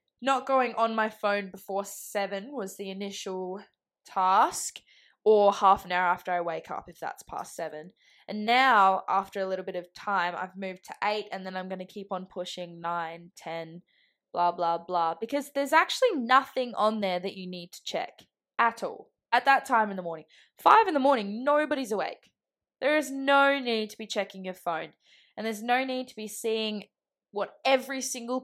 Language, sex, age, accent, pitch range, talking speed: English, female, 10-29, Australian, 190-250 Hz, 190 wpm